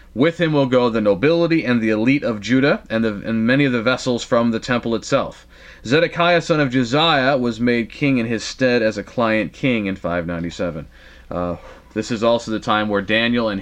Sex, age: male, 30-49